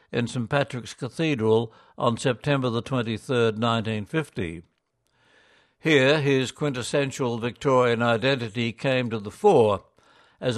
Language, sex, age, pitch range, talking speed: English, male, 60-79, 120-145 Hz, 100 wpm